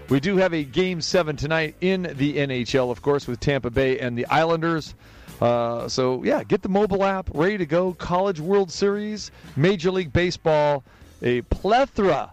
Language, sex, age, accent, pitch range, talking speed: English, male, 40-59, American, 125-170 Hz, 175 wpm